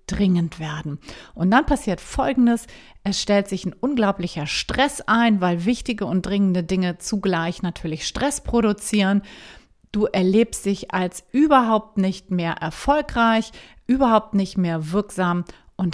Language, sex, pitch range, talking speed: German, female, 180-230 Hz, 130 wpm